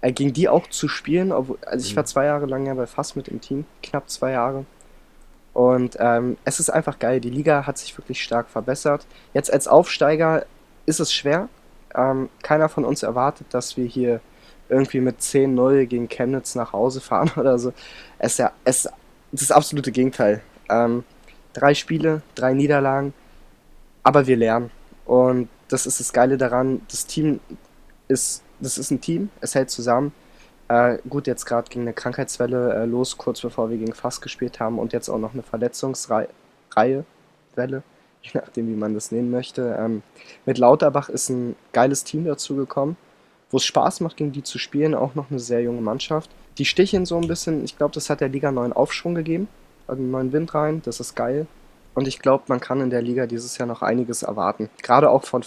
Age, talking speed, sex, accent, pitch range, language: 20-39, 195 wpm, male, German, 120-145 Hz, German